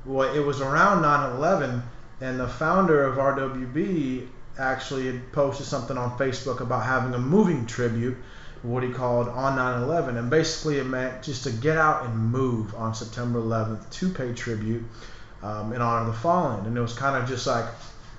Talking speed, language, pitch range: 180 wpm, English, 120-150 Hz